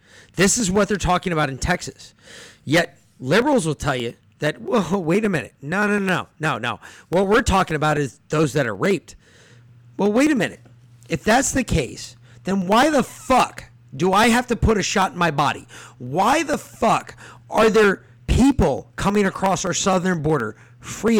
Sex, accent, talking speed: male, American, 190 wpm